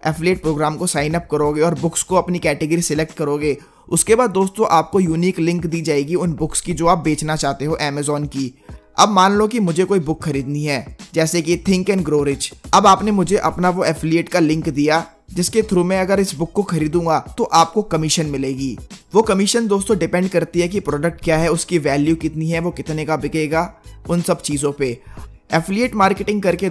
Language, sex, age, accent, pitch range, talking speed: Hindi, male, 20-39, native, 150-175 Hz, 200 wpm